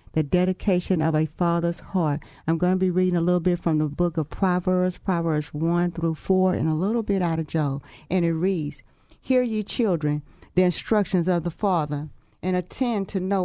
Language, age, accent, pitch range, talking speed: English, 40-59, American, 170-210 Hz, 200 wpm